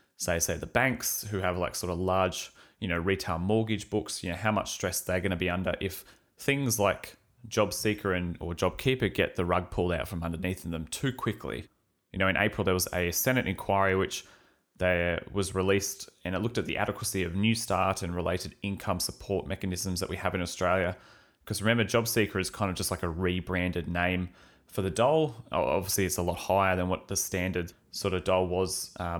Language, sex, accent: English, male, Australian